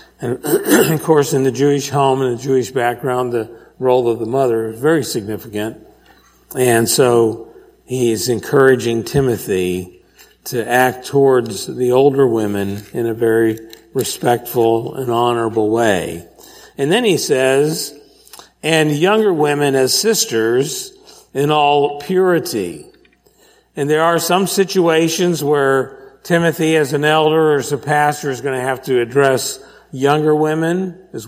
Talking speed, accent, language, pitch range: 140 wpm, American, English, 125-165 Hz